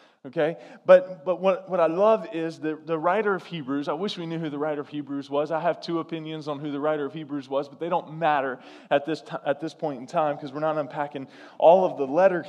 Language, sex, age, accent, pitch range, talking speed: English, male, 20-39, American, 155-190 Hz, 260 wpm